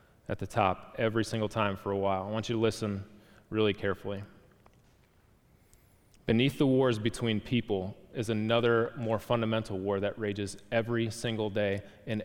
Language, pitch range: English, 105-135 Hz